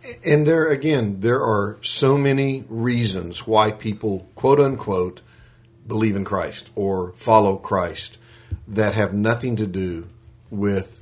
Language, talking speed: English, 130 wpm